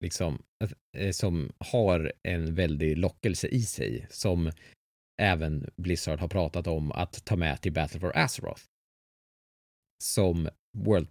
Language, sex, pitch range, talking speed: English, male, 85-115 Hz, 125 wpm